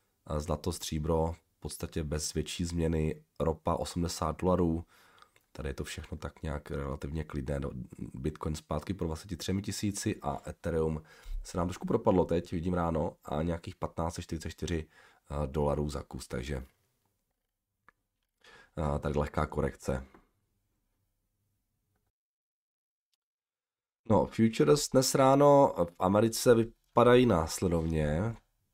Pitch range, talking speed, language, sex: 80-105 Hz, 110 wpm, Czech, male